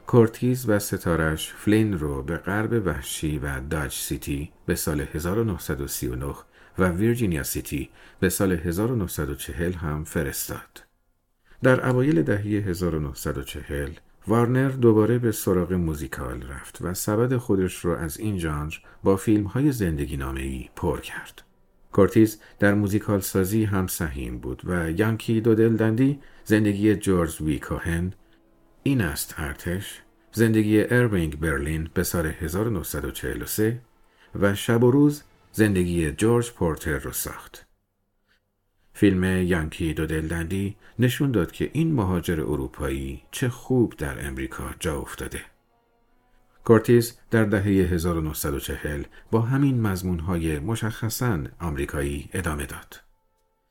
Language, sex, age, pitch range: Persian, male, 50-69, 80-110 Hz